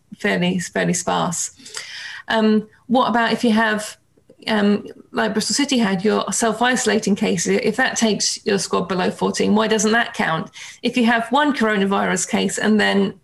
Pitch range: 205-230 Hz